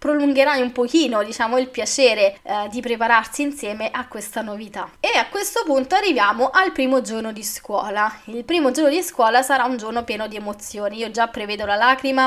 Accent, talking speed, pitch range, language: native, 190 wpm, 220-280 Hz, Italian